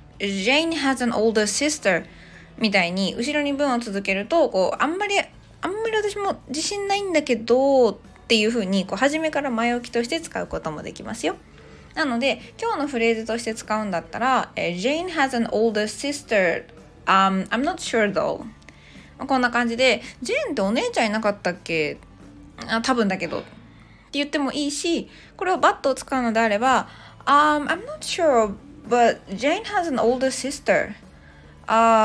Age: 20-39